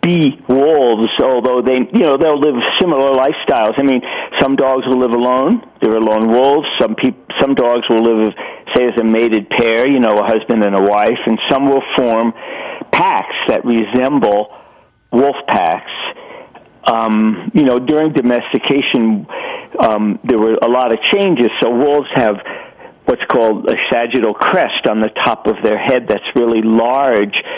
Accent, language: American, English